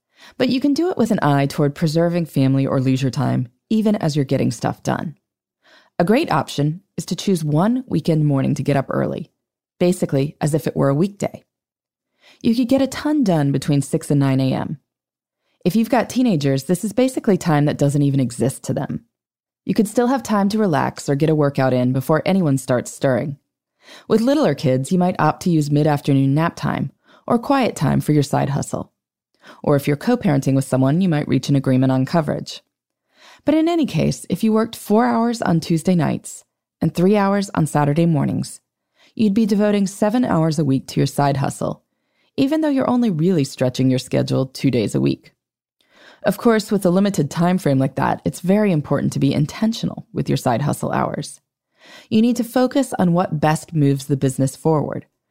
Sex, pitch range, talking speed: female, 140-210 Hz, 200 wpm